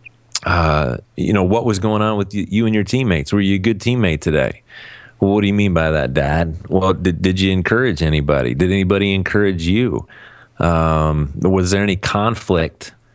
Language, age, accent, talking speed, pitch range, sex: English, 30-49, American, 185 wpm, 85-105 Hz, male